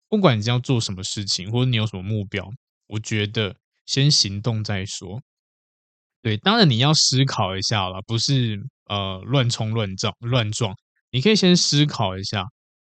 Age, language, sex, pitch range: 20-39, Chinese, male, 105-140 Hz